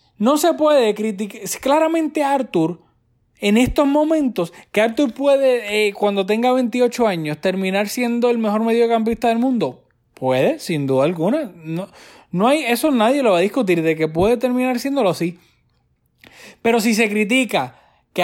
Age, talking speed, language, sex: 20-39, 160 wpm, Spanish, male